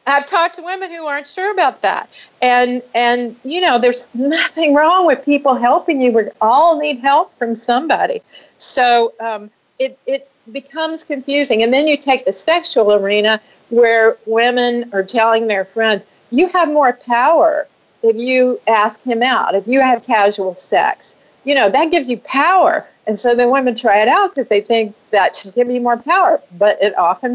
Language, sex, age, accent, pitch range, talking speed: English, female, 50-69, American, 220-285 Hz, 185 wpm